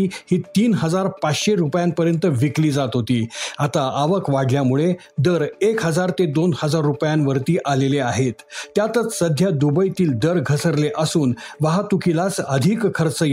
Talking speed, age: 70 wpm, 50-69